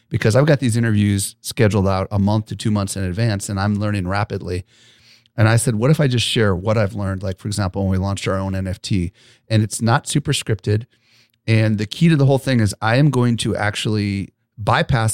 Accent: American